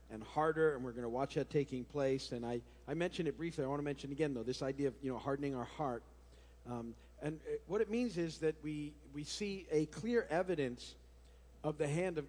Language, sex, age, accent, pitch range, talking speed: English, male, 50-69, American, 125-160 Hz, 240 wpm